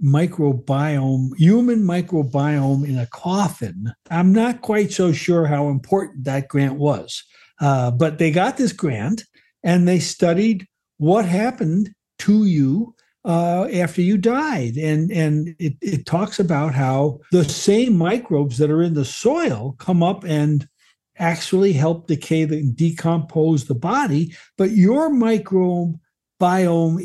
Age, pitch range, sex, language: 60-79, 140-185 Hz, male, English